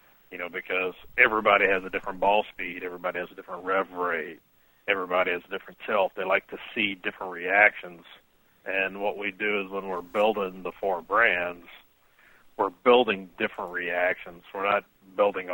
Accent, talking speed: American, 170 wpm